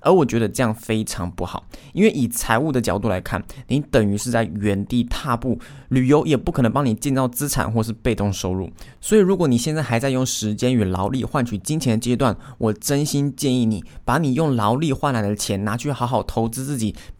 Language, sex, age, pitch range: Chinese, male, 20-39, 110-140 Hz